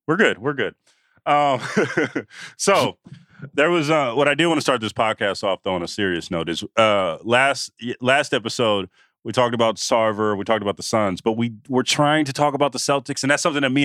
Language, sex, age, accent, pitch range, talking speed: English, male, 30-49, American, 105-135 Hz, 220 wpm